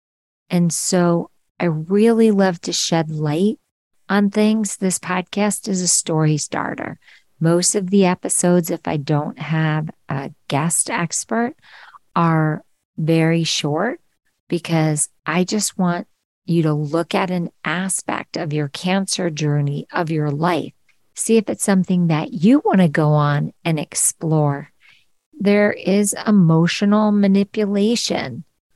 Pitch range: 160-195 Hz